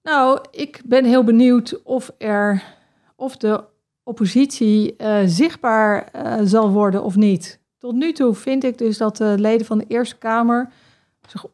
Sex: female